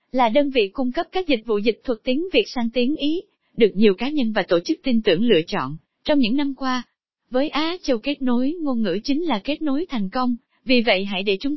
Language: Vietnamese